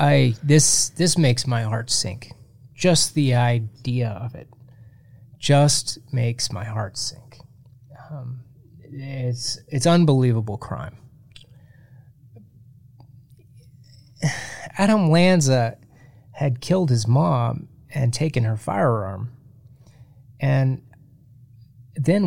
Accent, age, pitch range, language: American, 30-49, 120-140 Hz, English